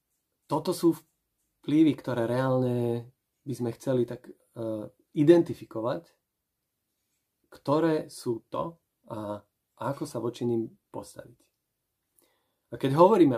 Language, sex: Slovak, male